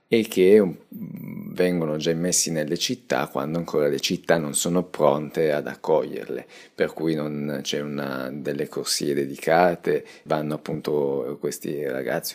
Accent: native